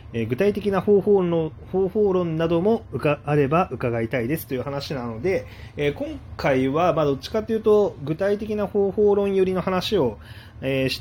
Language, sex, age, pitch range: Japanese, male, 30-49, 115-180 Hz